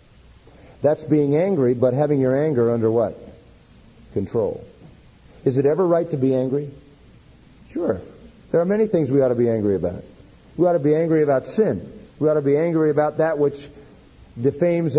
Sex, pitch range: male, 130-195 Hz